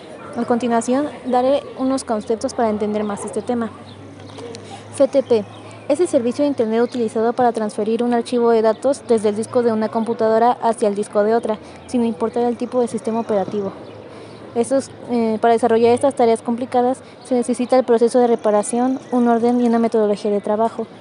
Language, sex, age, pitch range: Spanish, female, 20-39, 225-250 Hz